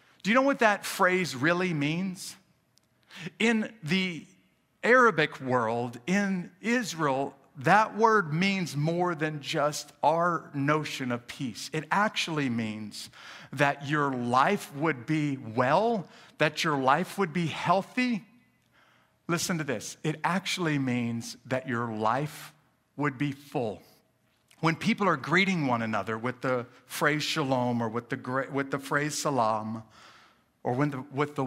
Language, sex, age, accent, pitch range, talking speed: English, male, 50-69, American, 125-160 Hz, 135 wpm